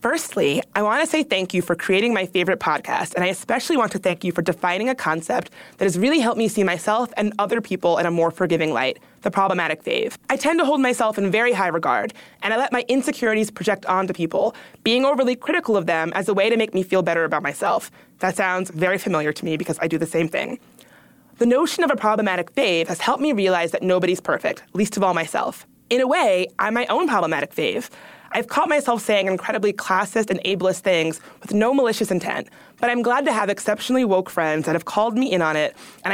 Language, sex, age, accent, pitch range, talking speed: English, female, 20-39, American, 180-235 Hz, 230 wpm